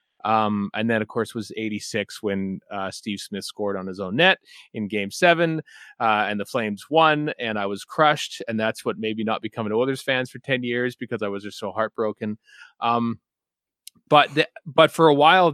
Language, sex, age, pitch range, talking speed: English, male, 30-49, 100-125 Hz, 205 wpm